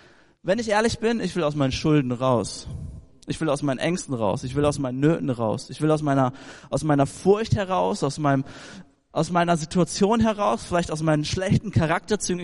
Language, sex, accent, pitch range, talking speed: German, male, German, 130-180 Hz, 200 wpm